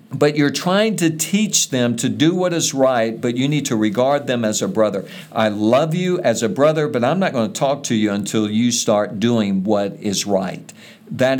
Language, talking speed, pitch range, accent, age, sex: English, 220 wpm, 110-145 Hz, American, 50-69, male